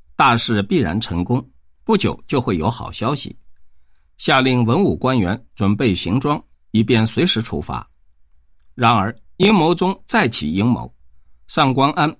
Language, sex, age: Chinese, male, 50-69